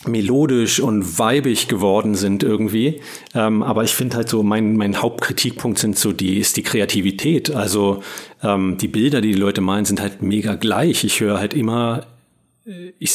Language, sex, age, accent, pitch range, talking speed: German, male, 40-59, German, 100-115 Hz, 175 wpm